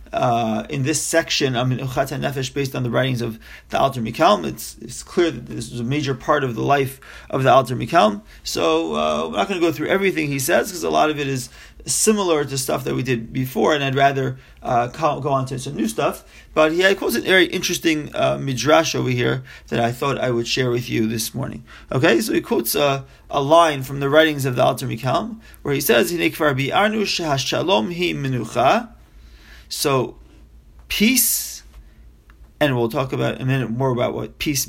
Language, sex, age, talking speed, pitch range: English, male, 30-49, 200 wpm, 125-160 Hz